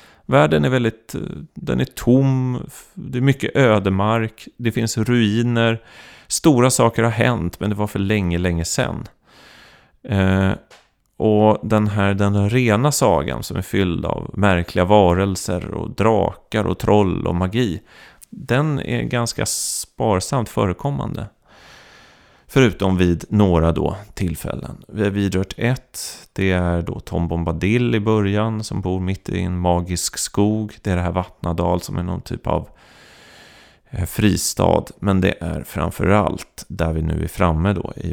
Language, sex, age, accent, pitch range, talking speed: Swedish, male, 30-49, native, 85-110 Hz, 145 wpm